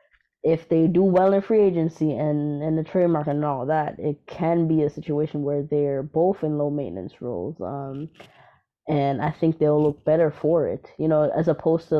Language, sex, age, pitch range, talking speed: English, female, 20-39, 150-165 Hz, 200 wpm